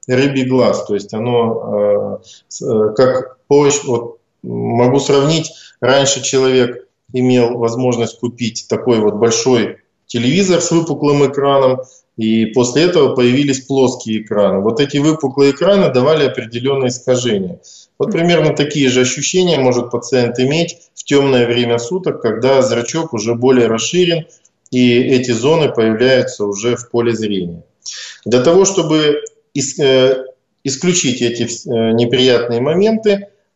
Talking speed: 120 wpm